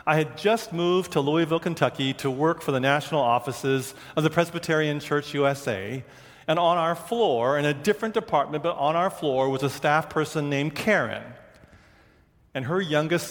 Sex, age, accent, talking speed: male, 40-59, American, 175 wpm